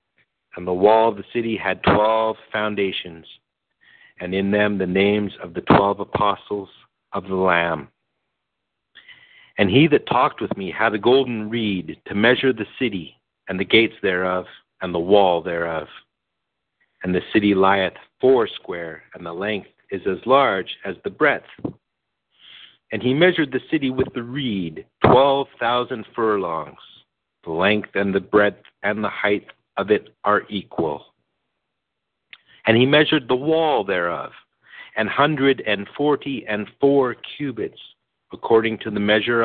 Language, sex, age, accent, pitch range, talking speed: English, male, 50-69, American, 95-120 Hz, 150 wpm